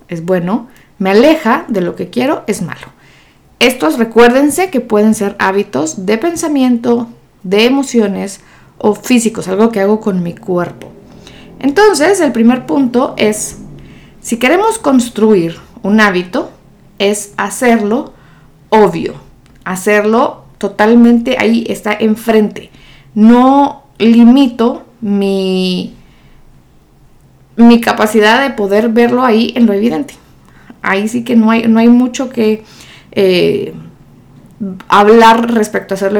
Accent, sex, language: Mexican, female, Spanish